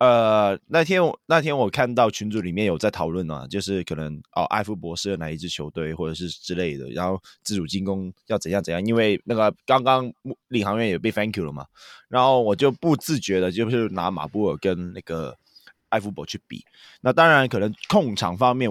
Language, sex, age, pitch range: Chinese, male, 20-39, 95-125 Hz